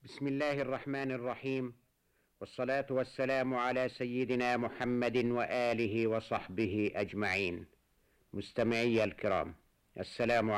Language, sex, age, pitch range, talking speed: Arabic, male, 50-69, 105-140 Hz, 85 wpm